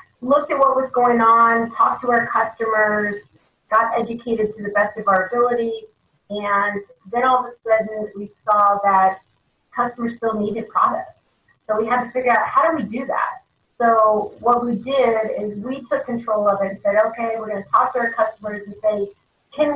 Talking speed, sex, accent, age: 195 wpm, female, American, 30-49